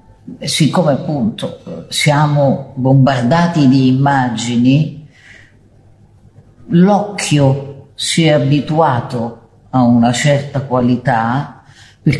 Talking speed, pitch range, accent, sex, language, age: 75 wpm, 120-165 Hz, Italian, female, English, 50-69